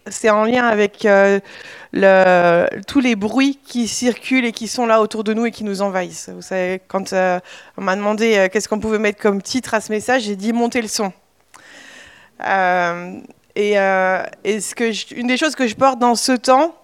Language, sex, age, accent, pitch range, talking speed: French, female, 20-39, French, 205-245 Hz, 210 wpm